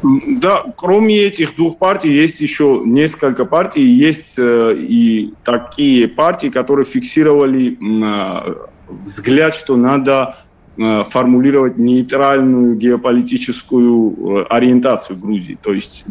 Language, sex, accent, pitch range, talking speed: Russian, male, native, 110-135 Hz, 95 wpm